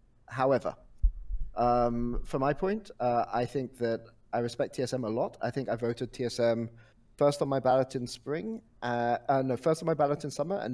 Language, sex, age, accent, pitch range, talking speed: English, male, 30-49, British, 115-140 Hz, 195 wpm